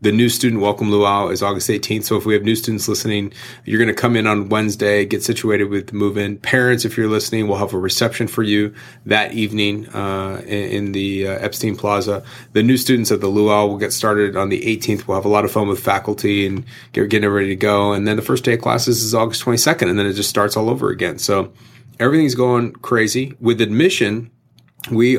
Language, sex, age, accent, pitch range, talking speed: English, male, 30-49, American, 100-115 Hz, 230 wpm